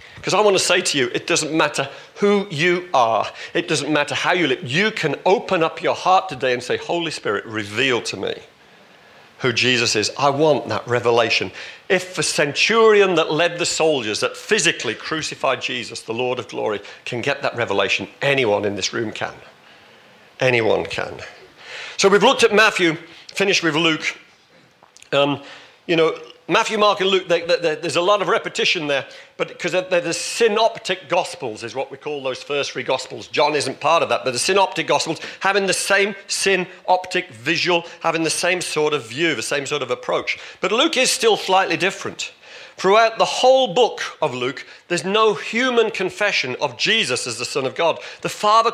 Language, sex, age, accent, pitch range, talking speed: English, male, 50-69, British, 155-205 Hz, 190 wpm